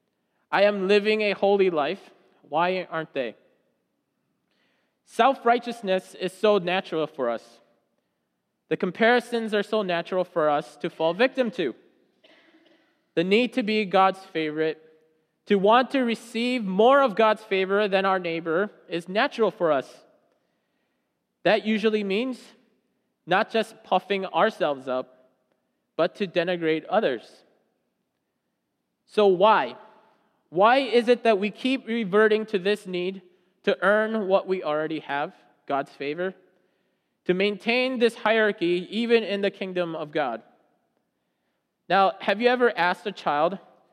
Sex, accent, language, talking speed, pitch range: male, American, English, 130 wpm, 175-225 Hz